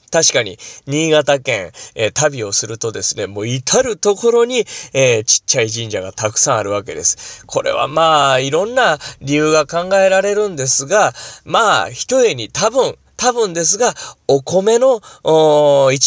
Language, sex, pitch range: Japanese, male, 135-220 Hz